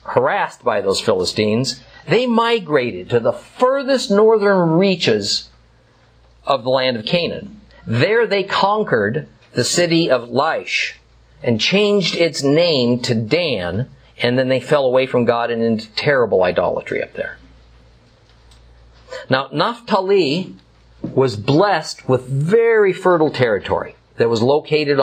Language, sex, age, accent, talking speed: English, male, 50-69, American, 125 wpm